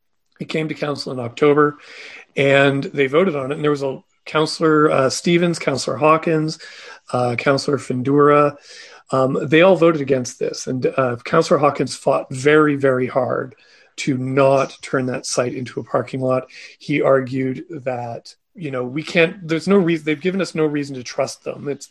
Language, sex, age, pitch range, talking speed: English, male, 40-59, 135-160 Hz, 180 wpm